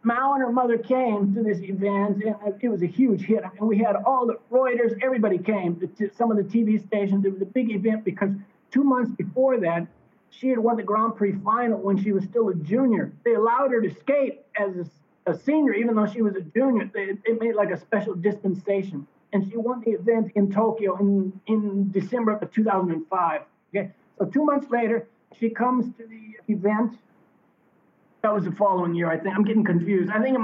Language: English